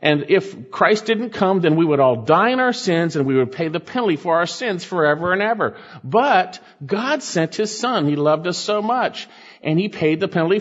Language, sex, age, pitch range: English, male, 50-69, 135-210 Hz